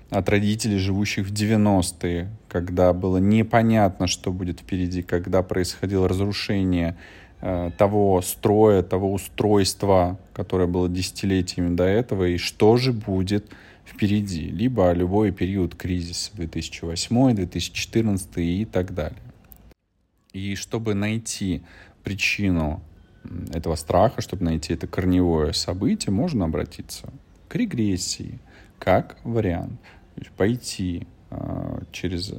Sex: male